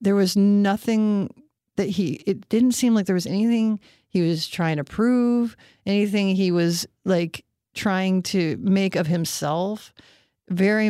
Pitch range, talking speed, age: 170-190 Hz, 150 wpm, 40-59